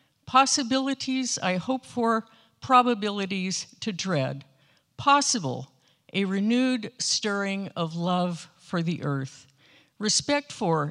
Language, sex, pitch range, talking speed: English, female, 155-220 Hz, 100 wpm